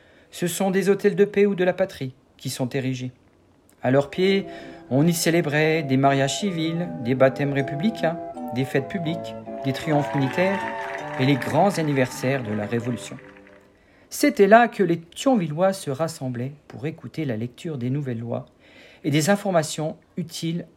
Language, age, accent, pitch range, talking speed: French, 50-69, French, 130-195 Hz, 160 wpm